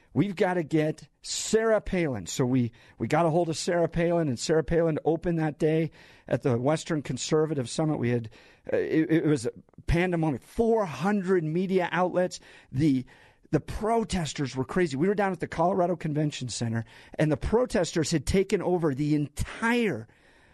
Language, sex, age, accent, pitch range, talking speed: English, male, 50-69, American, 135-175 Hz, 165 wpm